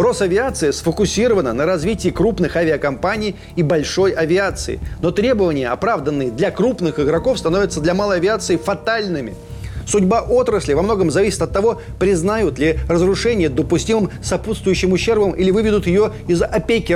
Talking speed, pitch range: 135 wpm, 170-210 Hz